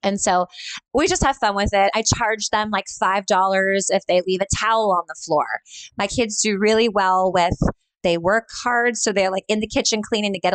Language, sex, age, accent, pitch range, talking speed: English, female, 20-39, American, 180-230 Hz, 220 wpm